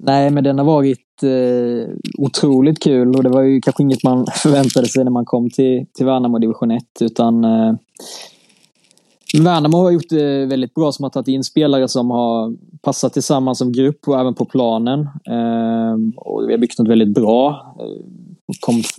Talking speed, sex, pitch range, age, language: 185 wpm, male, 120-145 Hz, 20-39, Swedish